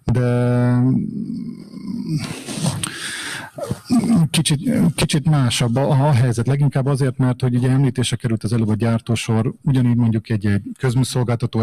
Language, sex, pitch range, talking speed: Hungarian, male, 120-140 Hz, 115 wpm